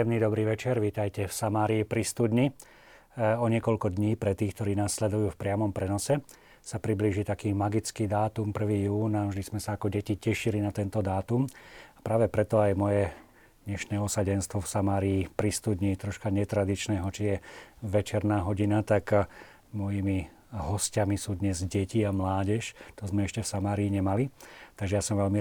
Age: 40-59